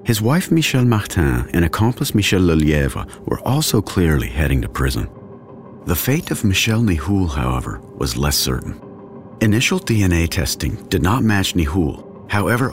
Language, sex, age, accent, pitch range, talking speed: English, male, 50-69, American, 75-105 Hz, 145 wpm